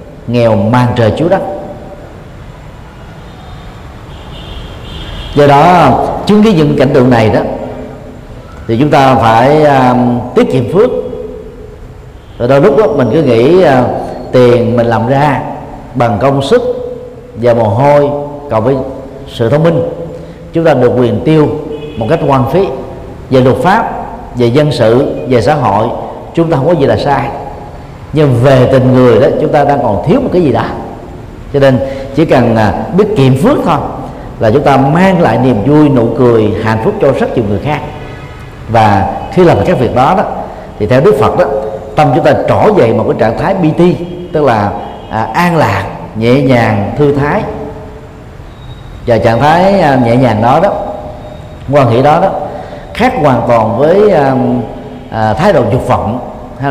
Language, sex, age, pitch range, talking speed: Vietnamese, male, 50-69, 115-150 Hz, 165 wpm